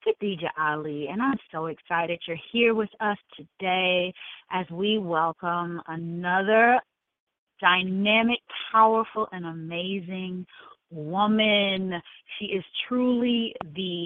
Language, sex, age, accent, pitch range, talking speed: English, female, 30-49, American, 170-220 Hz, 100 wpm